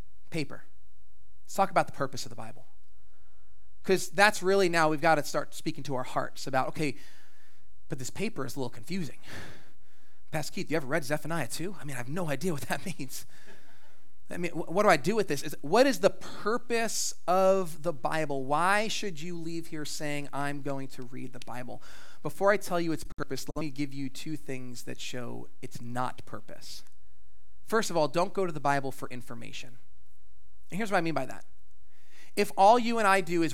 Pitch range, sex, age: 130-190 Hz, male, 30-49